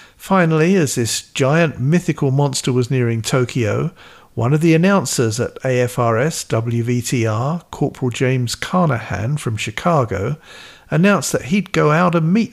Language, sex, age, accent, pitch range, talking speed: English, male, 50-69, British, 120-160 Hz, 135 wpm